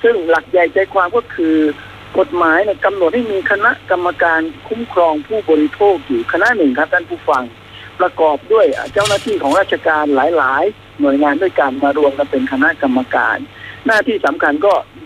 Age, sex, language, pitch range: 60-79, male, Thai, 140-200 Hz